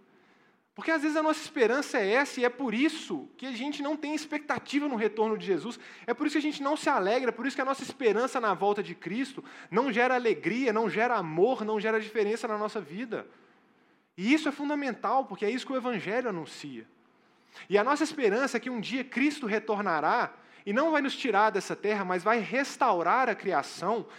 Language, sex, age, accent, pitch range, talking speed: Portuguese, male, 20-39, Brazilian, 205-275 Hz, 215 wpm